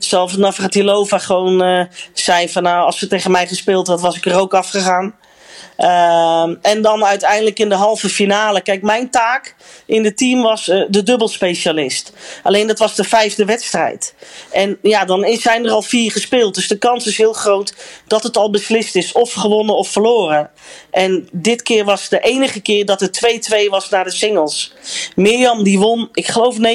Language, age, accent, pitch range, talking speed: Dutch, 40-59, Dutch, 190-230 Hz, 190 wpm